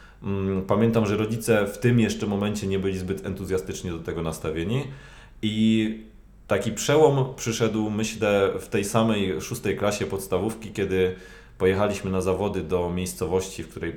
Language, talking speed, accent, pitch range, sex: Polish, 140 wpm, native, 95-115 Hz, male